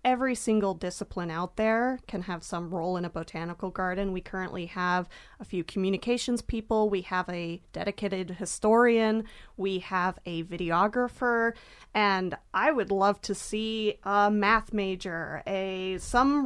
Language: English